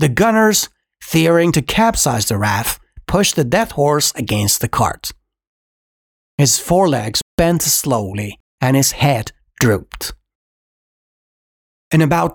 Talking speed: 115 wpm